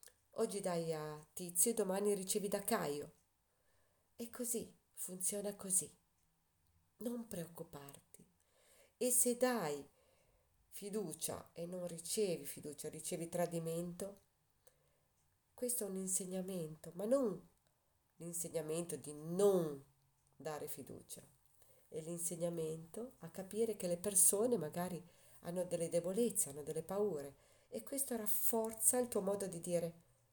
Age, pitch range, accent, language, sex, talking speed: 40-59, 135-200 Hz, native, Italian, female, 115 wpm